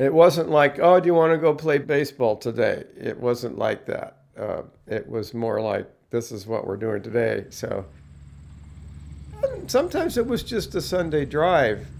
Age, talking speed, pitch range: 50-69, 175 wpm, 115-155 Hz